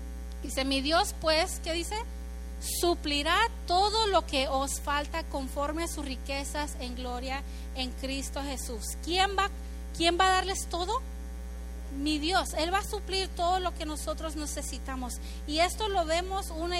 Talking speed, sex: 155 wpm, female